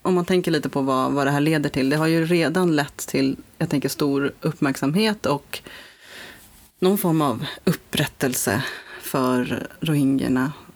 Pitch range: 135-165 Hz